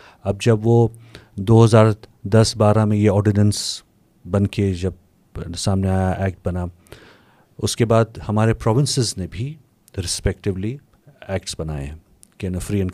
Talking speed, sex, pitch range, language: 140 wpm, male, 90-115 Hz, Urdu